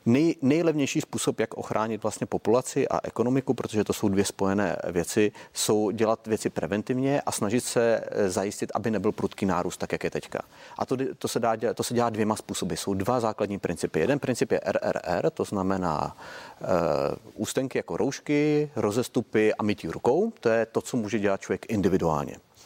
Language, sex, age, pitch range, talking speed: Czech, male, 30-49, 95-130 Hz, 165 wpm